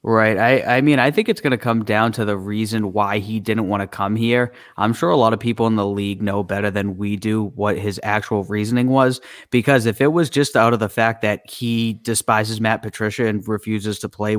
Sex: male